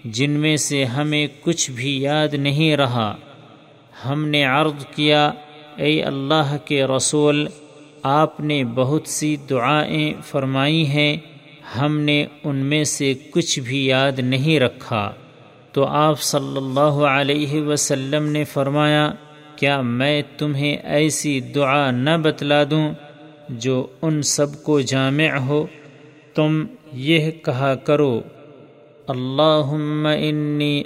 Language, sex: Urdu, male